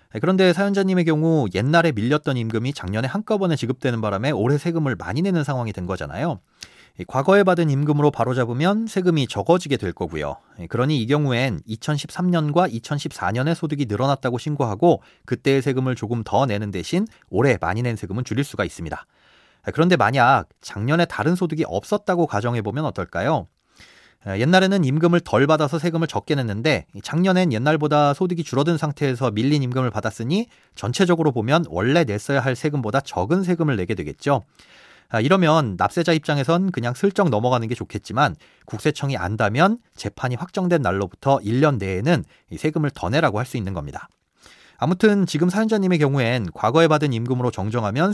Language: Korean